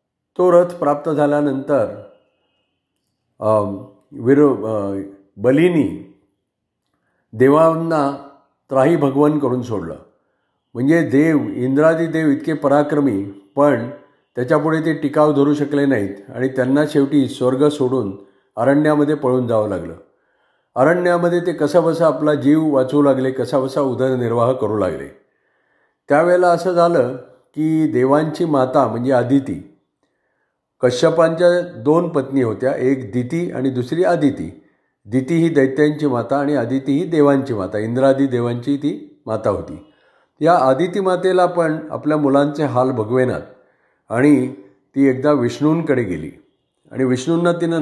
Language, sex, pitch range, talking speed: Marathi, male, 130-155 Hz, 90 wpm